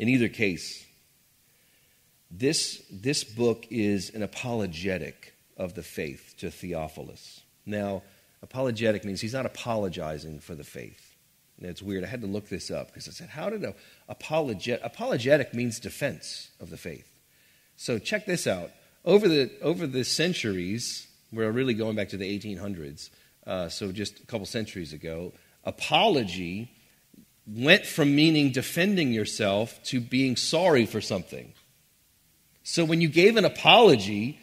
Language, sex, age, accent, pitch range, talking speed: English, male, 40-59, American, 100-140 Hz, 150 wpm